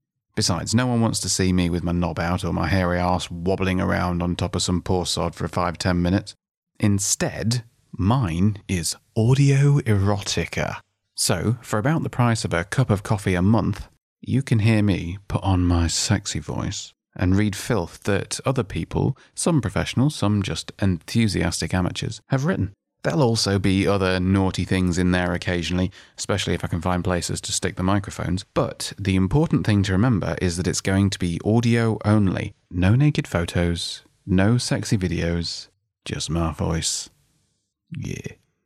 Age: 30-49